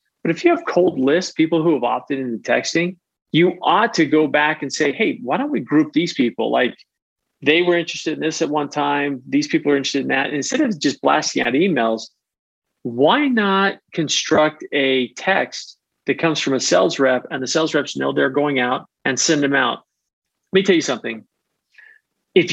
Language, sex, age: English, male, 40-59